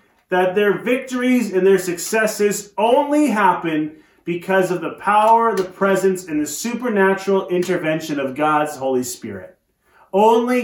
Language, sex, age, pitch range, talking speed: English, male, 30-49, 160-220 Hz, 130 wpm